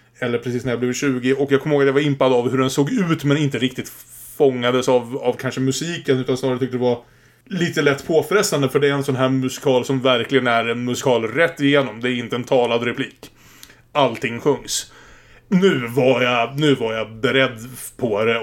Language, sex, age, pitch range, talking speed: Swedish, male, 30-49, 120-145 Hz, 215 wpm